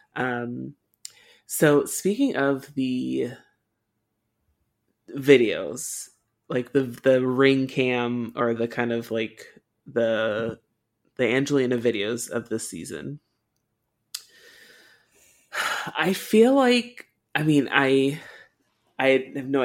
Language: English